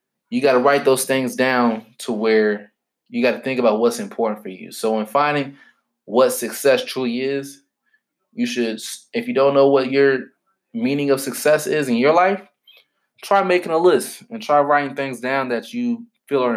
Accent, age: American, 20-39